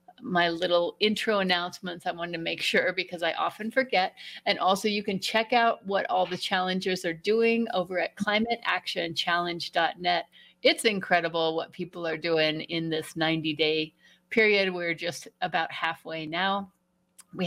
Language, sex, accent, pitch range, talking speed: English, female, American, 170-215 Hz, 150 wpm